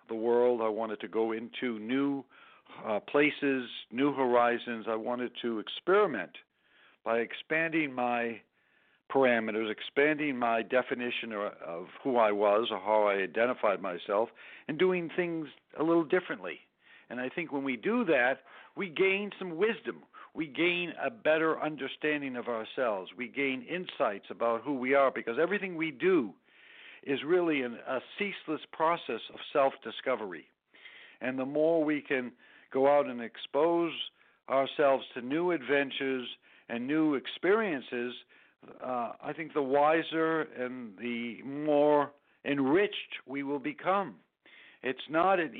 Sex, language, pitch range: male, English, 120-155 Hz